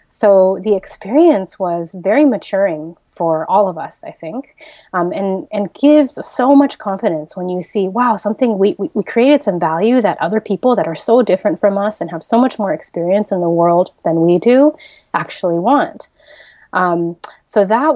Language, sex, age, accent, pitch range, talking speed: English, female, 20-39, American, 170-210 Hz, 185 wpm